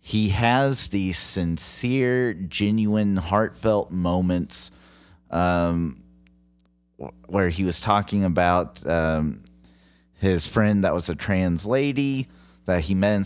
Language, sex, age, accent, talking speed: English, male, 30-49, American, 115 wpm